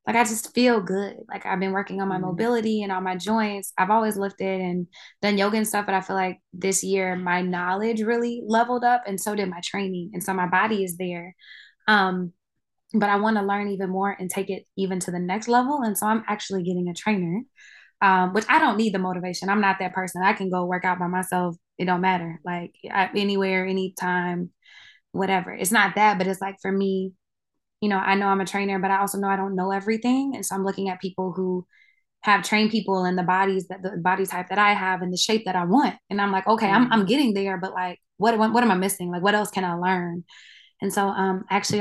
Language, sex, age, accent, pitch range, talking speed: English, female, 20-39, American, 185-210 Hz, 245 wpm